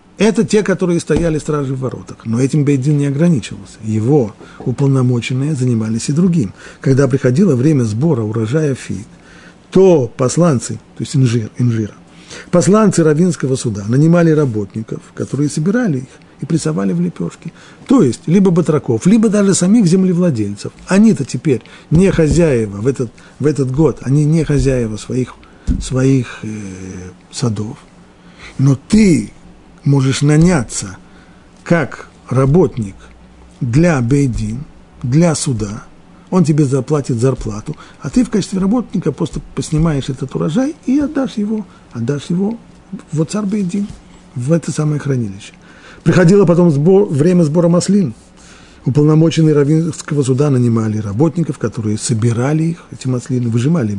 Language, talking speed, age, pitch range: Russian, 130 wpm, 50-69, 125-170 Hz